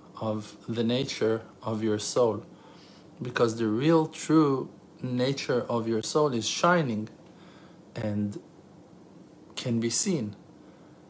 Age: 50-69